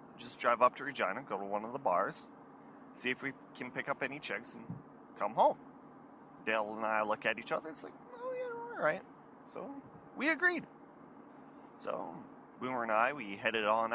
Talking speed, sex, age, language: 200 wpm, male, 30-49, English